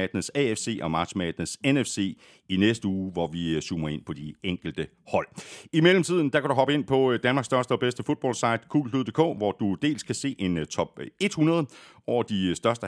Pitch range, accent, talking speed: 90-135 Hz, native, 190 wpm